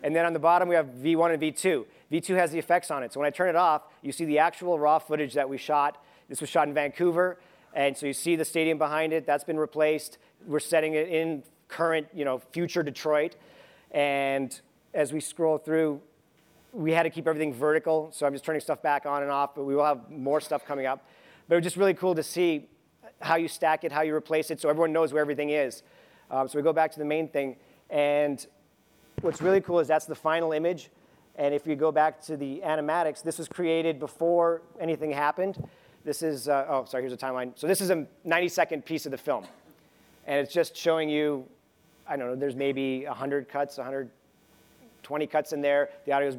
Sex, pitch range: male, 145-165 Hz